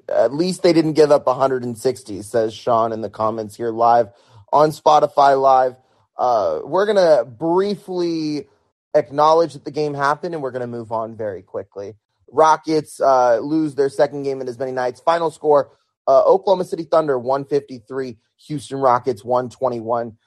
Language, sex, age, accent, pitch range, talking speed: English, male, 20-39, American, 120-150 Hz, 165 wpm